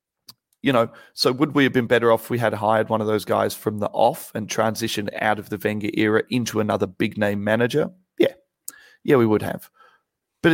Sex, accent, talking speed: male, Australian, 210 wpm